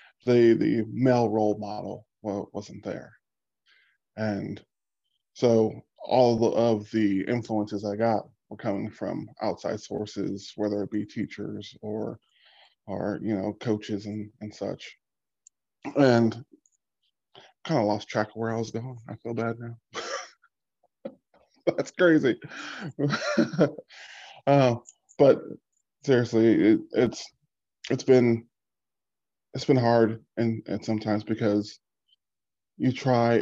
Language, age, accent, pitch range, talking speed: English, 20-39, American, 105-120 Hz, 120 wpm